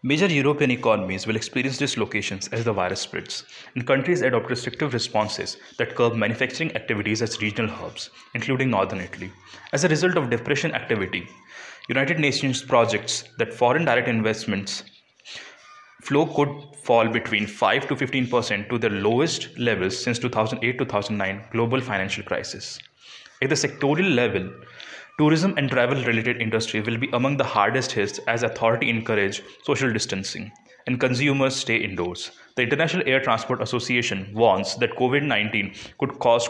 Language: English